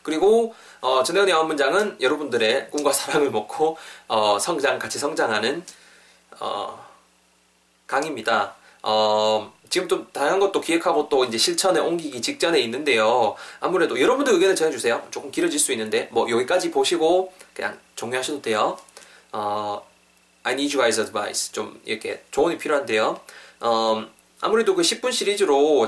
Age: 20-39